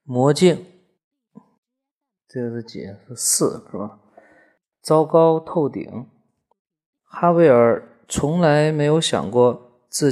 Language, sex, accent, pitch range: Chinese, male, native, 135-185 Hz